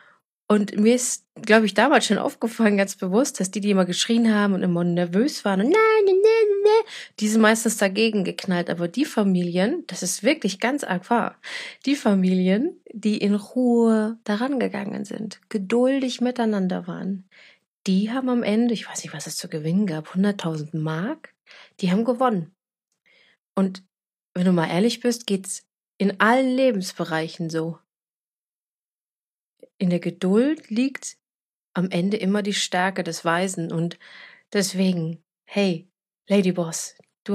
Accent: German